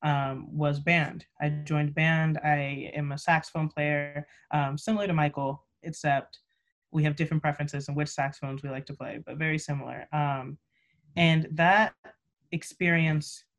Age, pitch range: 20-39, 145-160 Hz